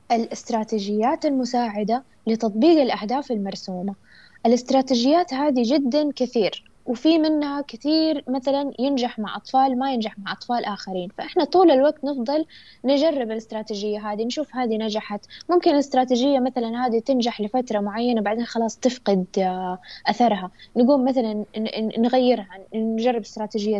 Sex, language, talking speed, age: female, Arabic, 120 wpm, 10-29